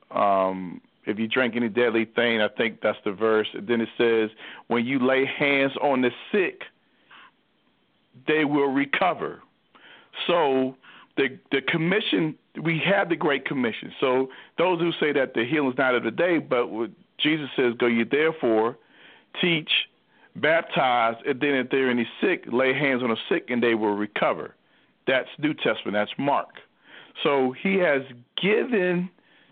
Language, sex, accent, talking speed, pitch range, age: English, male, American, 165 wpm, 120-160 Hz, 40-59